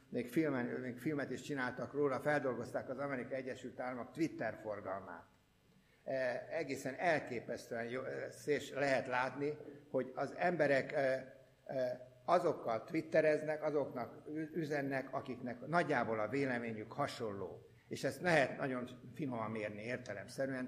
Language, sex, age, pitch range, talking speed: Hungarian, male, 60-79, 130-155 Hz, 115 wpm